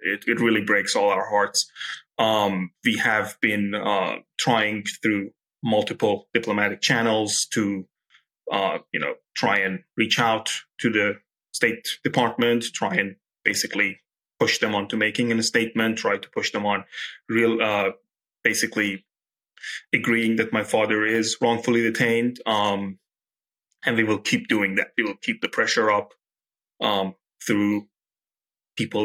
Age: 30-49